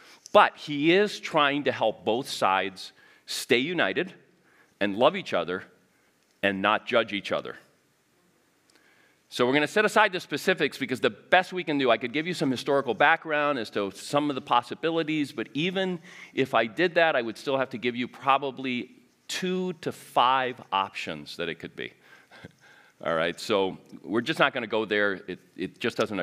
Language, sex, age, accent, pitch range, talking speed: English, male, 40-59, American, 110-165 Hz, 190 wpm